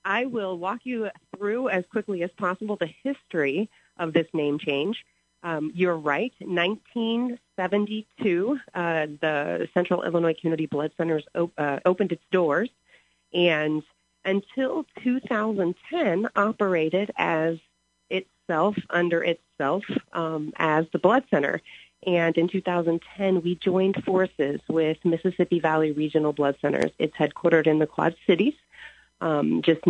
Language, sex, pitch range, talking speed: English, female, 155-200 Hz, 125 wpm